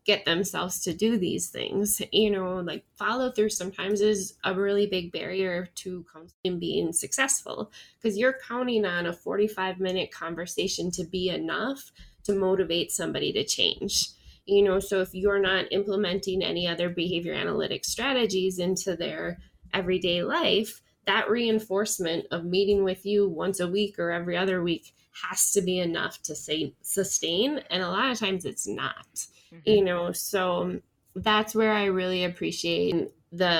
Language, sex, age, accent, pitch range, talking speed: English, female, 20-39, American, 180-220 Hz, 160 wpm